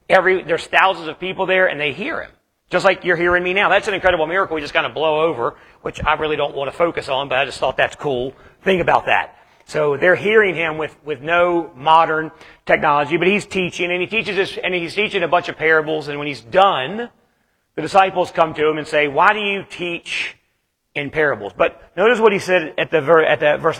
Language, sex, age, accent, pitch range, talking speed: English, male, 40-59, American, 155-195 Hz, 235 wpm